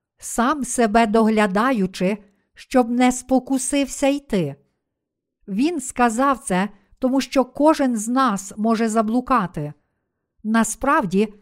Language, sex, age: Ukrainian, female, 50-69